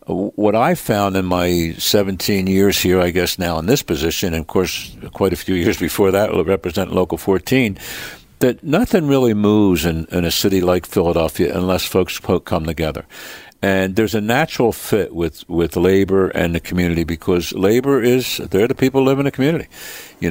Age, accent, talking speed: 60-79, American, 185 wpm